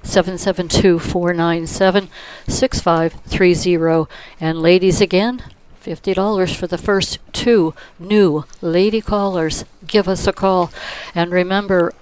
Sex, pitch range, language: female, 165-195 Hz, English